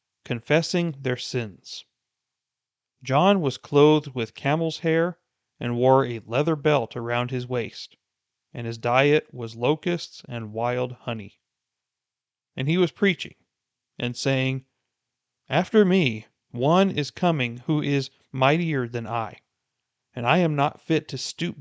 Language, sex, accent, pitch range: English, male, American, 120-150 Hz